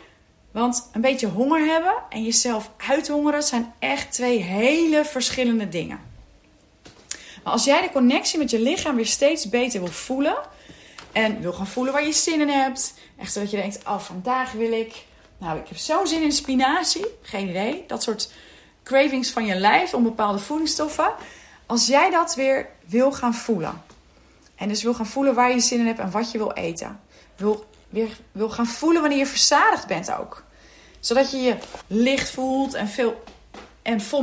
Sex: female